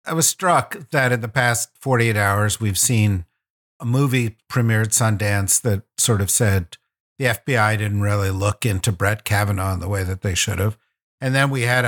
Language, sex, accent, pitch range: English, male, American, 105-140 Hz